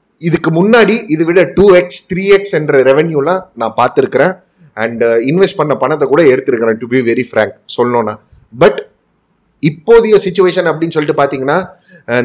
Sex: male